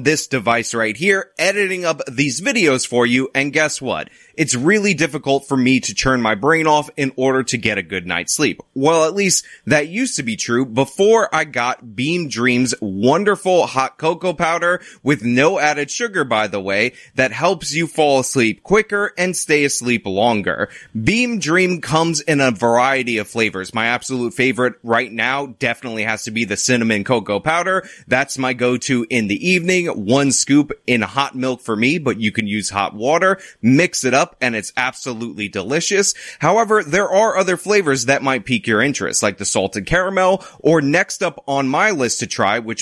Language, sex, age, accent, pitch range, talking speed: English, male, 20-39, American, 120-165 Hz, 190 wpm